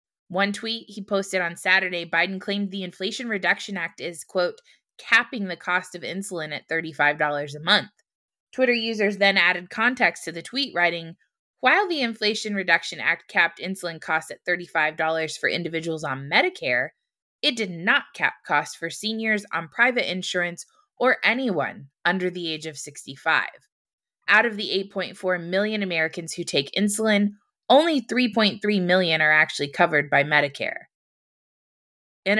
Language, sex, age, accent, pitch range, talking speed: English, female, 20-39, American, 170-215 Hz, 150 wpm